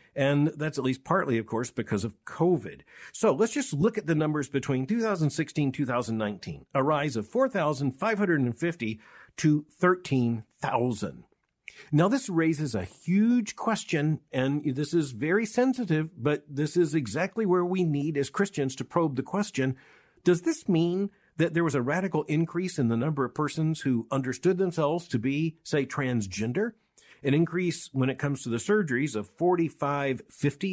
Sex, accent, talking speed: male, American, 155 wpm